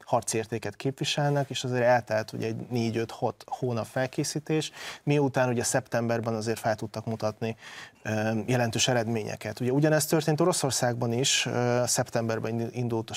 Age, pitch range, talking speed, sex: 30-49, 115-140 Hz, 125 wpm, male